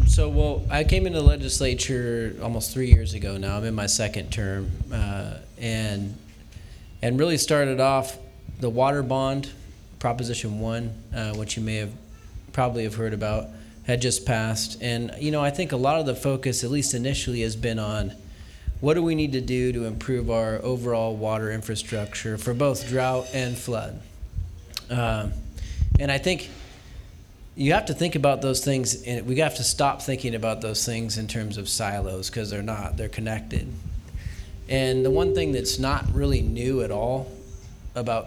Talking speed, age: 175 wpm, 30-49